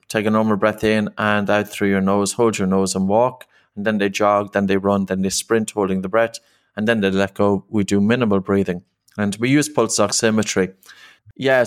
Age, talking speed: 30-49, 220 wpm